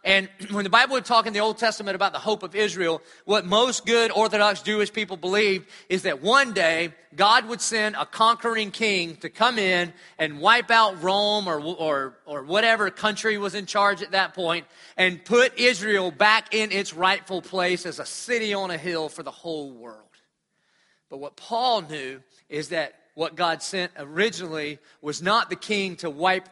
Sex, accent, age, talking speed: male, American, 40-59, 190 wpm